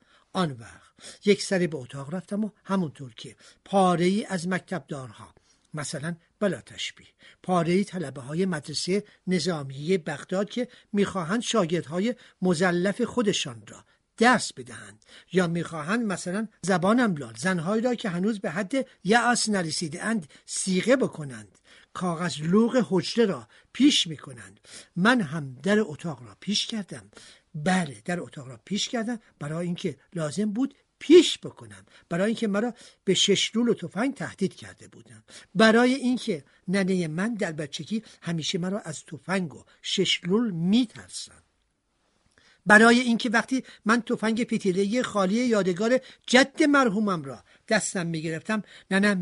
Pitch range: 155-215 Hz